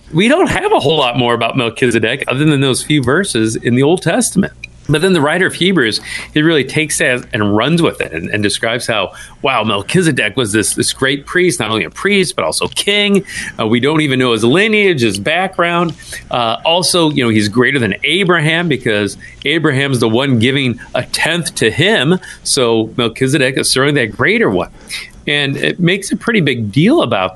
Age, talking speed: 40-59, 200 wpm